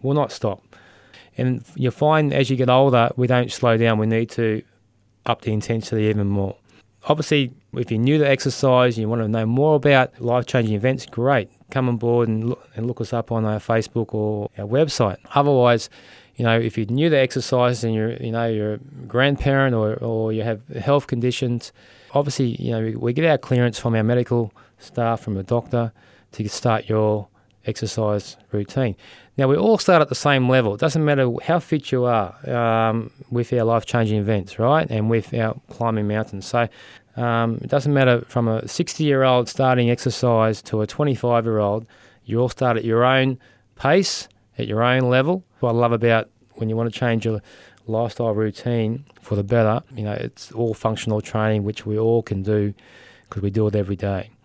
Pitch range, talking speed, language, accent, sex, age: 110-130 Hz, 200 wpm, English, Australian, male, 20-39